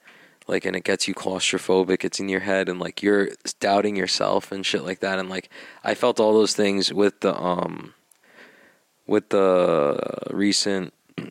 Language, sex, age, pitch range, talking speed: English, male, 20-39, 95-105 Hz, 175 wpm